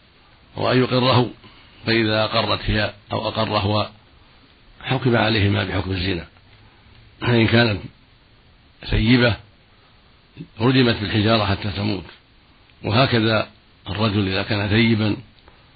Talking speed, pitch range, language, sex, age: 90 wpm, 105-120 Hz, Arabic, male, 60-79